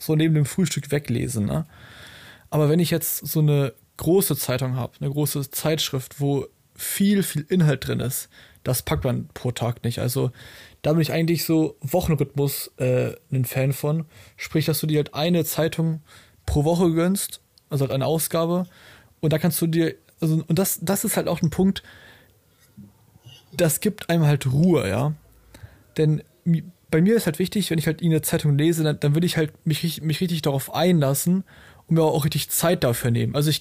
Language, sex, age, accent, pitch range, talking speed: German, male, 20-39, German, 135-170 Hz, 190 wpm